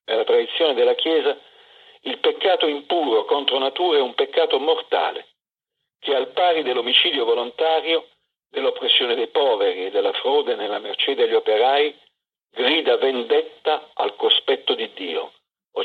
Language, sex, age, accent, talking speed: Italian, male, 50-69, native, 135 wpm